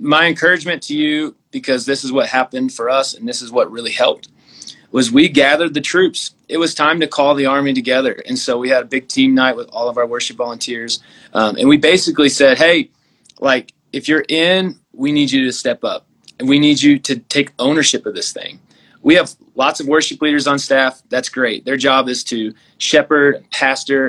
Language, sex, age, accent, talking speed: English, male, 30-49, American, 215 wpm